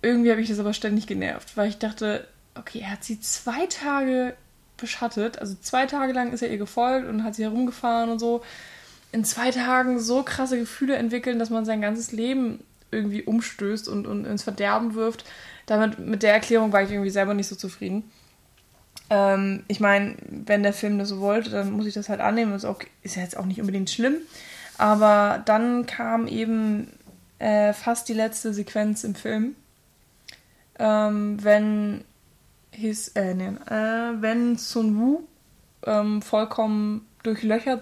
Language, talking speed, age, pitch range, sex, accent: German, 170 wpm, 20-39, 205-230 Hz, female, German